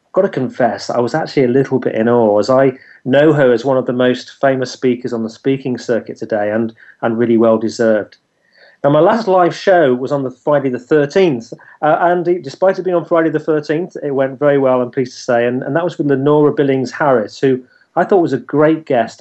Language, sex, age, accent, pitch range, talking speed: English, male, 30-49, British, 120-155 Hz, 230 wpm